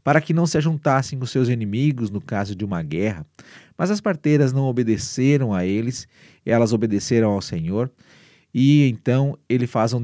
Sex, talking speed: male, 175 wpm